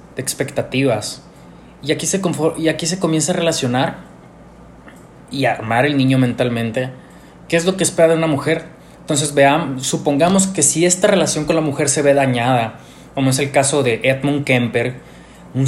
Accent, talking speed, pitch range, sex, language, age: Mexican, 170 wpm, 115-155 Hz, male, Spanish, 20-39